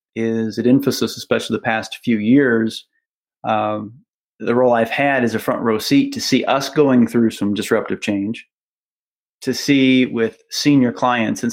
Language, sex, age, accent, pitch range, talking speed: English, male, 30-49, American, 115-135 Hz, 165 wpm